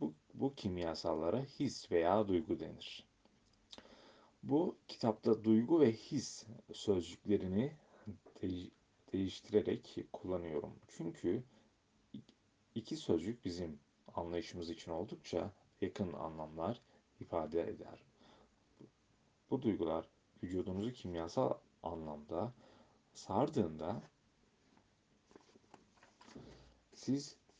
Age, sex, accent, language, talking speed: 40-59, male, native, Turkish, 70 wpm